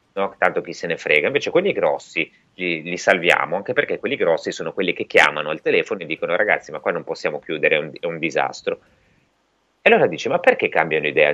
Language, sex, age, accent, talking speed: Italian, male, 30-49, native, 230 wpm